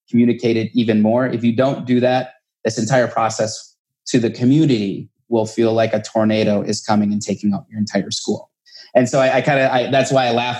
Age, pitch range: 30-49, 110-125 Hz